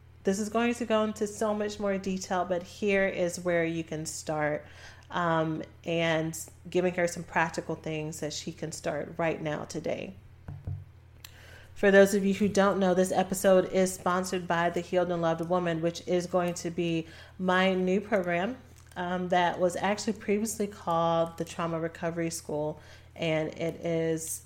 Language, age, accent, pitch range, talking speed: English, 30-49, American, 160-190 Hz, 170 wpm